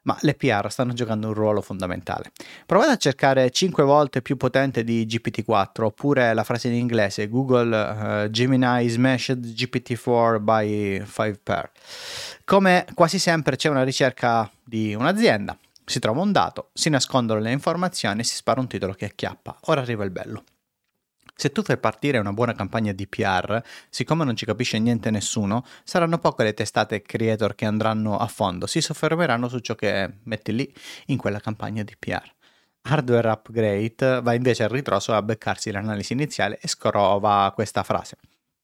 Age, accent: 30-49, native